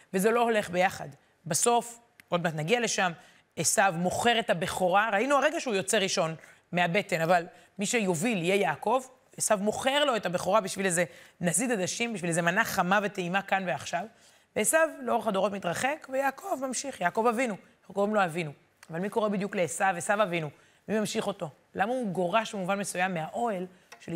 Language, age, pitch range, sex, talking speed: Hebrew, 30-49, 180-230 Hz, female, 170 wpm